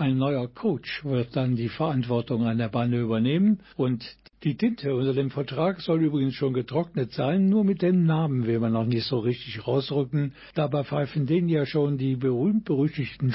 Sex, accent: male, German